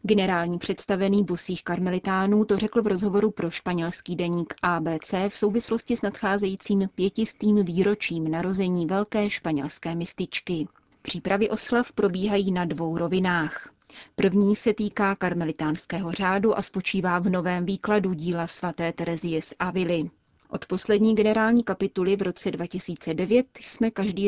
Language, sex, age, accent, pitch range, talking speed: Czech, female, 30-49, native, 175-205 Hz, 130 wpm